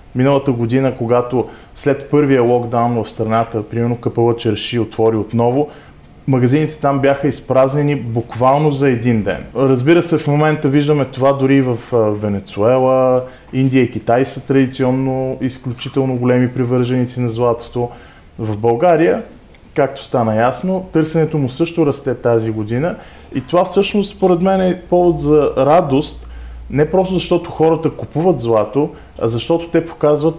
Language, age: Bulgarian, 20-39